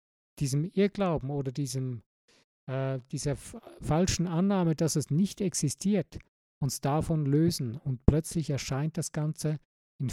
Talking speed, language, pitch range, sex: 120 wpm, German, 135-170 Hz, male